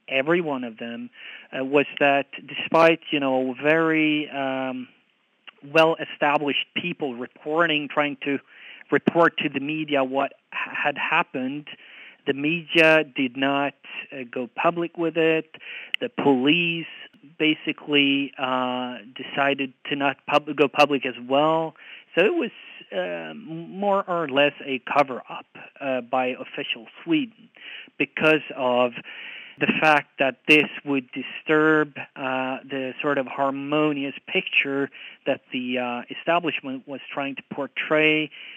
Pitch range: 130-155 Hz